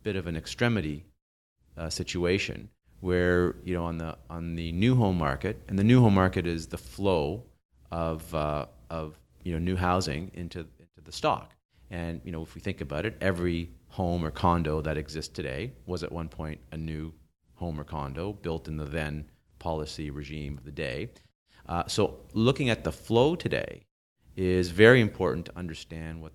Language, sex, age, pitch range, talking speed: English, male, 40-59, 75-95 Hz, 185 wpm